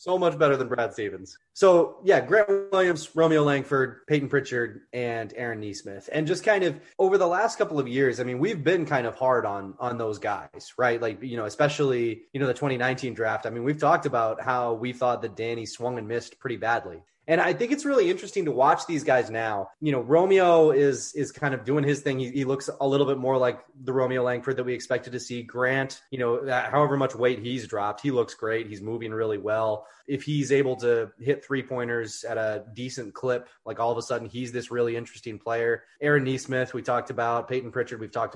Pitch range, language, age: 115-150 Hz, English, 20-39